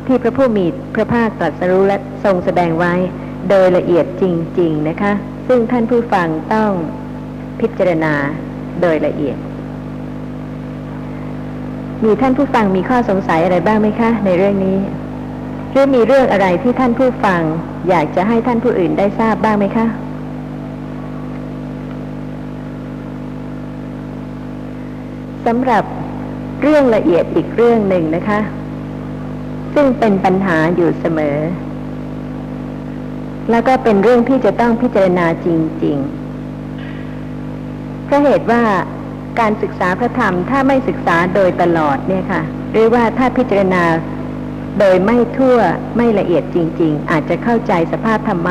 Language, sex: Thai, female